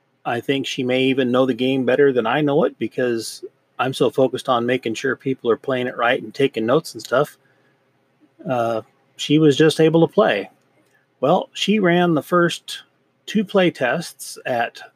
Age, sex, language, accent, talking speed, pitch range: 30-49, male, English, American, 185 wpm, 130-150 Hz